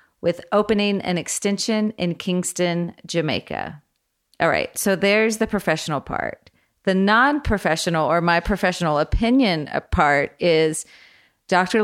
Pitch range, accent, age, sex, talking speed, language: 160-205 Hz, American, 40-59, female, 115 wpm, English